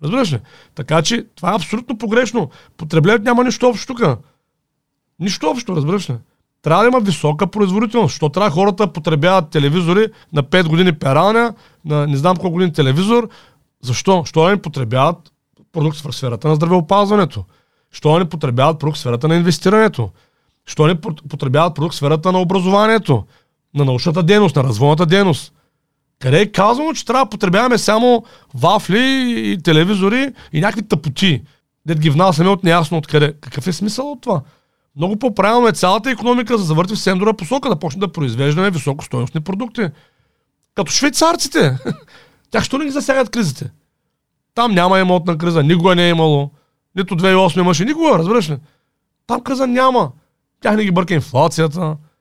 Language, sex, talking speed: Bulgarian, male, 160 wpm